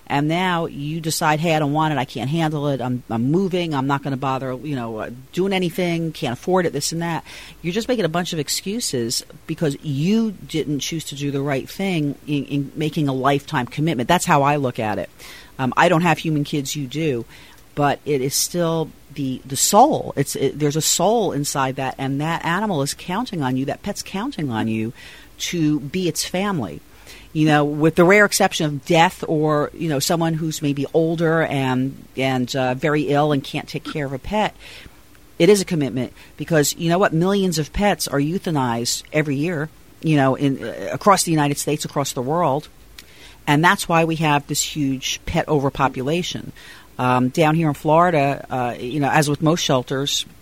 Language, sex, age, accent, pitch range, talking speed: English, female, 40-59, American, 135-165 Hz, 205 wpm